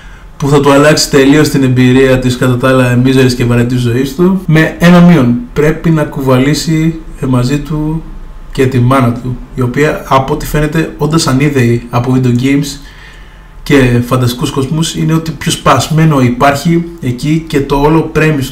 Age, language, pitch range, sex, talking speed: 20-39, Greek, 130-160 Hz, male, 160 wpm